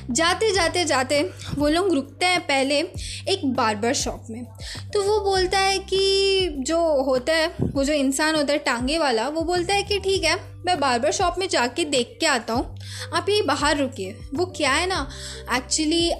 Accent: native